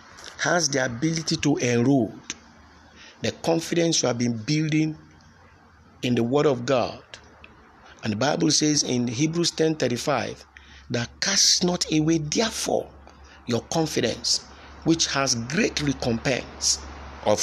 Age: 50-69